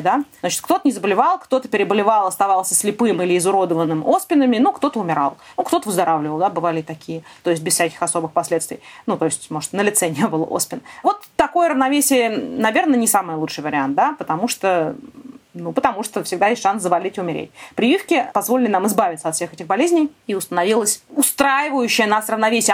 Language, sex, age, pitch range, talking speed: Russian, female, 20-39, 180-255 Hz, 180 wpm